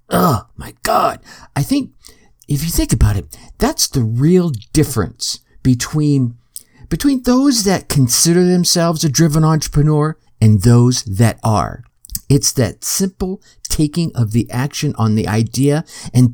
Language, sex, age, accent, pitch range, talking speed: English, male, 50-69, American, 115-180 Hz, 140 wpm